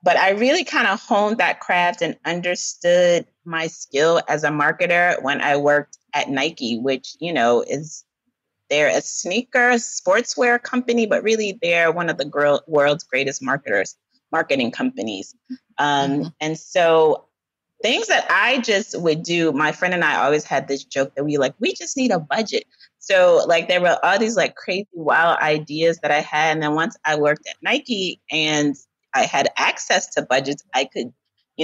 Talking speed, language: 180 wpm, English